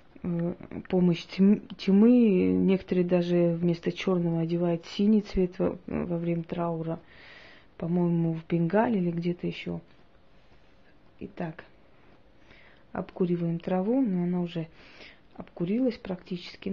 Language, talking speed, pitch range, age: Russian, 95 wpm, 175-195 Hz, 20-39